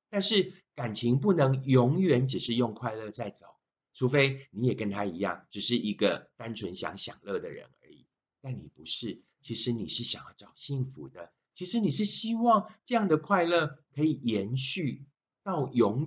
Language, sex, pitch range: Chinese, male, 105-160 Hz